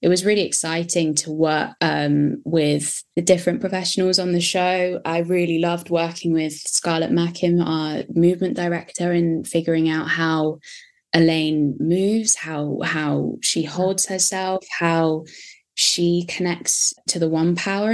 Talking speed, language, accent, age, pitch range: 140 wpm, English, British, 10-29, 150-175 Hz